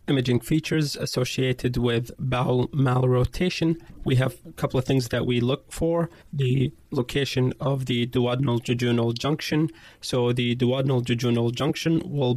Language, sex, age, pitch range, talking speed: English, male, 30-49, 125-145 Hz, 130 wpm